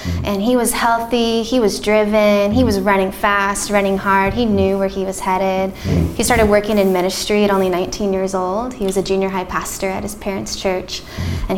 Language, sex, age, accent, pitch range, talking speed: English, female, 20-39, American, 190-210 Hz, 205 wpm